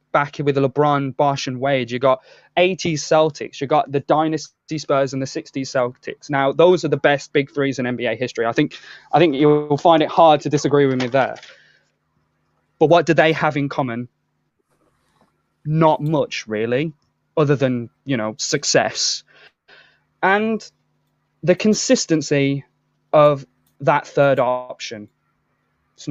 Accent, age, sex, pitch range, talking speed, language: British, 20-39, male, 140-180 Hz, 150 wpm, English